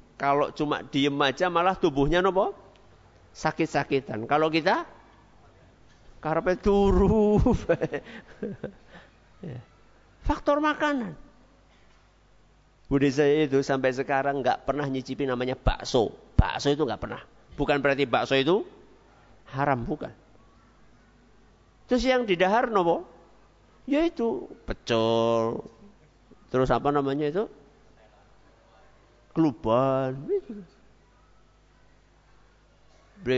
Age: 50-69